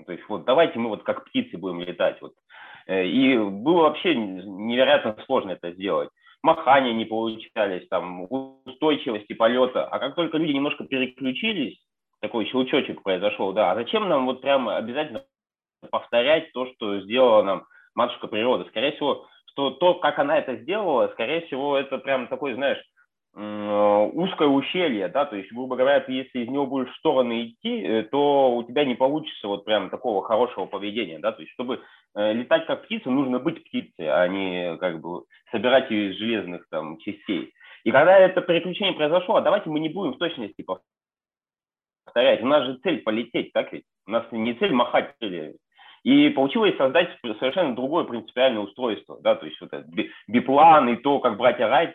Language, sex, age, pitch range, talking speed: Russian, male, 20-39, 110-180 Hz, 170 wpm